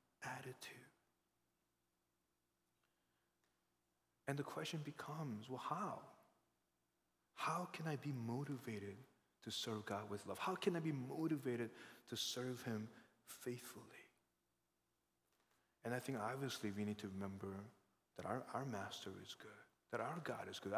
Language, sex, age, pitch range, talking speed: English, male, 30-49, 110-160 Hz, 130 wpm